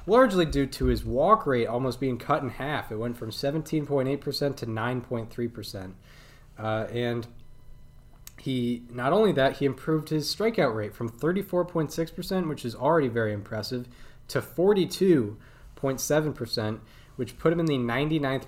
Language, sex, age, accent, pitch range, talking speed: English, male, 20-39, American, 115-145 Hz, 135 wpm